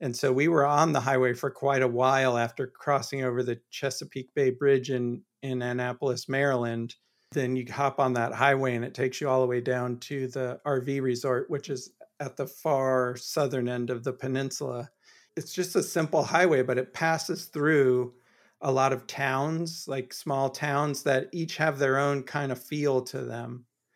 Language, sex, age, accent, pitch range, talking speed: English, male, 40-59, American, 125-140 Hz, 190 wpm